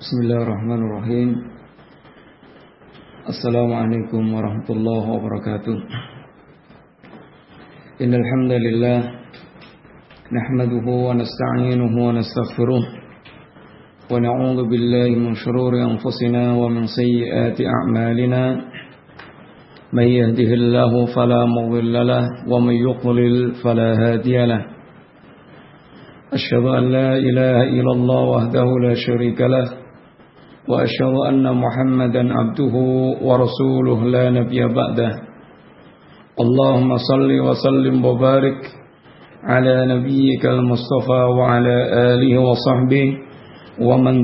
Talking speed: 85 wpm